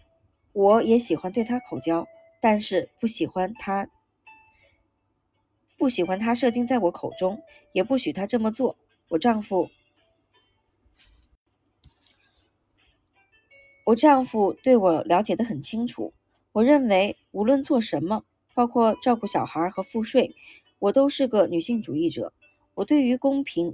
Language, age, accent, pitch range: Chinese, 20-39, native, 175-255 Hz